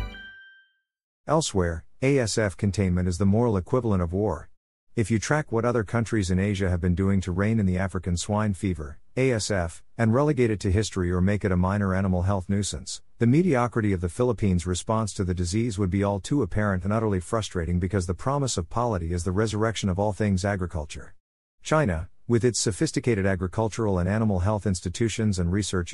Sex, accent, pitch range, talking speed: male, American, 90-115 Hz, 185 wpm